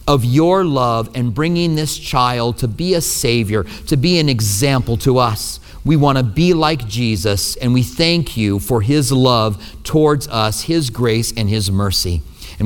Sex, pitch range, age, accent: male, 110-155 Hz, 40-59, American